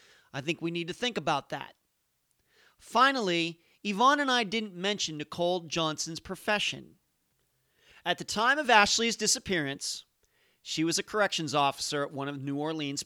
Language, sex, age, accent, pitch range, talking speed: English, male, 40-59, American, 135-185 Hz, 150 wpm